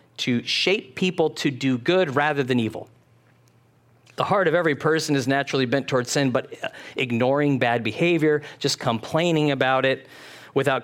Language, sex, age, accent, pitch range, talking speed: English, male, 40-59, American, 125-170 Hz, 155 wpm